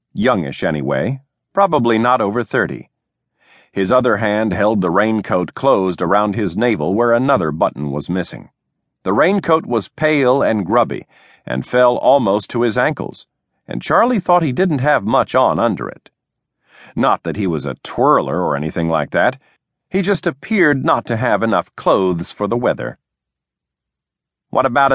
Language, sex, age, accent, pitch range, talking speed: English, male, 50-69, American, 95-150 Hz, 160 wpm